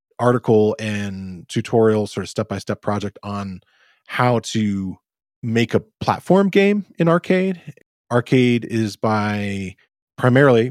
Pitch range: 100-120 Hz